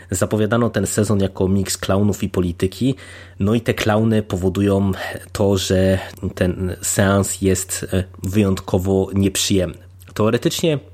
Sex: male